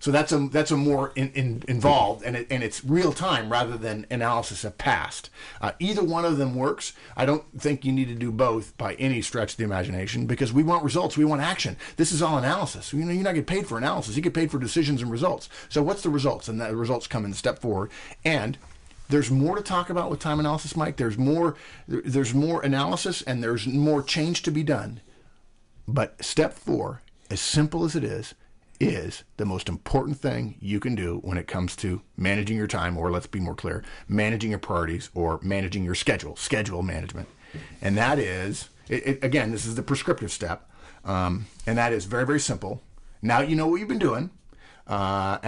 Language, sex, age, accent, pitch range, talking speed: English, male, 50-69, American, 105-145 Hz, 215 wpm